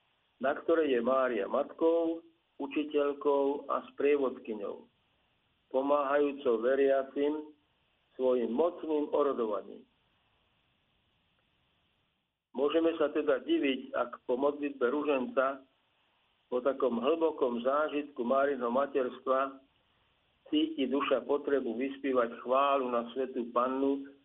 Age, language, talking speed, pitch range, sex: 50-69, Slovak, 85 wpm, 125-150 Hz, male